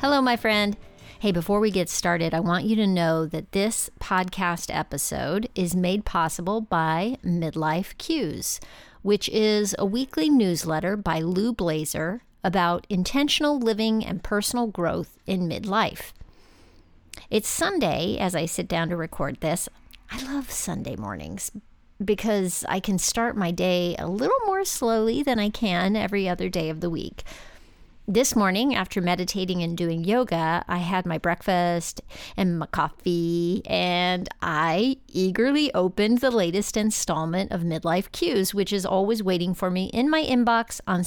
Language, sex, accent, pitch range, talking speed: English, female, American, 170-220 Hz, 155 wpm